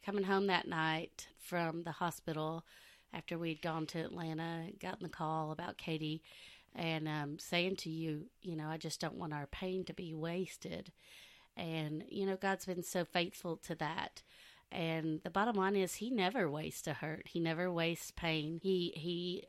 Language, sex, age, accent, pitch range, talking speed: English, female, 30-49, American, 160-180 Hz, 180 wpm